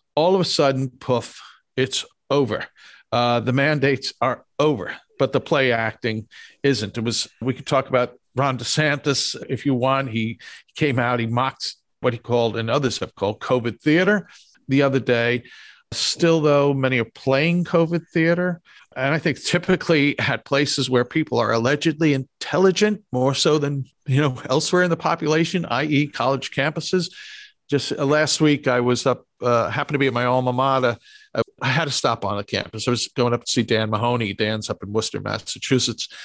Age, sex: 50-69, male